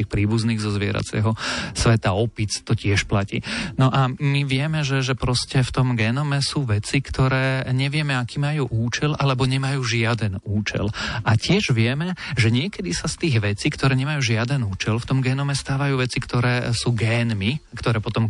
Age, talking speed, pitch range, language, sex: 40-59, 170 wpm, 110-135 Hz, Slovak, male